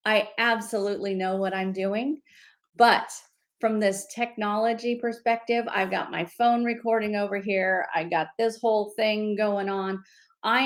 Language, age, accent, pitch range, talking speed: English, 40-59, American, 195-235 Hz, 145 wpm